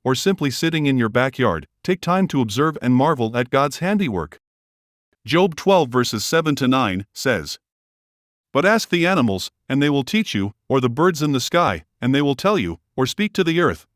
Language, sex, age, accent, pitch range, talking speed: English, male, 50-69, American, 110-155 Hz, 200 wpm